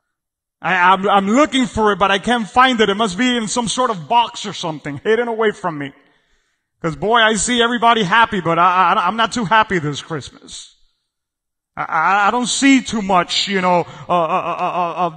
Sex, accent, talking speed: male, American, 210 wpm